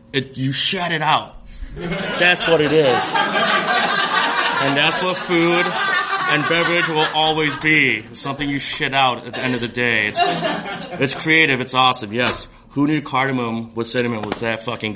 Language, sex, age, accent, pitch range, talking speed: English, male, 30-49, American, 105-135 Hz, 170 wpm